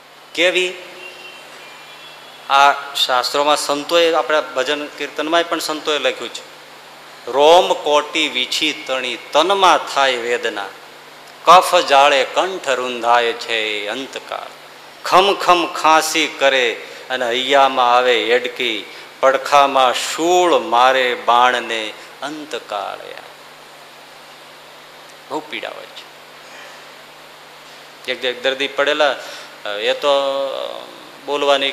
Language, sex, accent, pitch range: Gujarati, male, native, 130-165 Hz